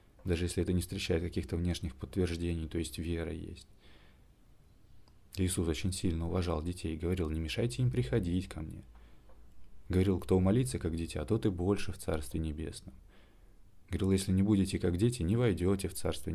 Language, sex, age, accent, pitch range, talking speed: Russian, male, 20-39, native, 80-100 Hz, 175 wpm